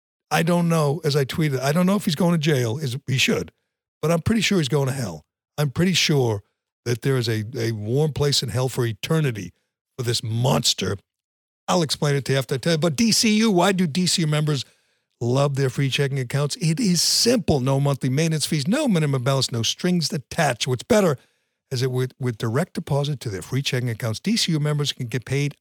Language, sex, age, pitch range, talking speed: English, male, 60-79, 125-165 Hz, 220 wpm